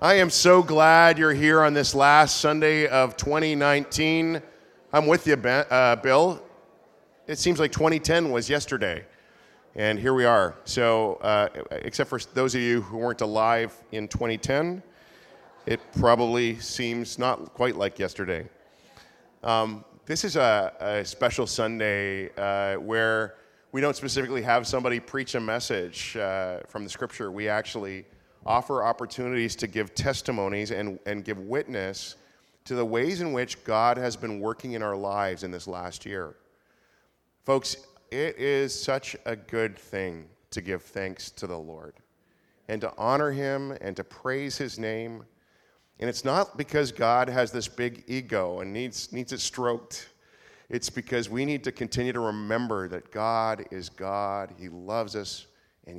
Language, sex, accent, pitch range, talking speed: English, male, American, 105-135 Hz, 160 wpm